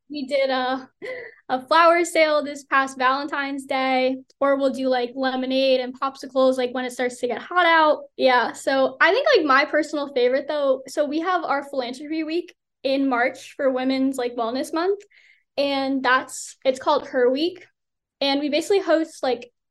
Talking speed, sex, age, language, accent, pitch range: 175 wpm, female, 20-39, English, American, 260-315 Hz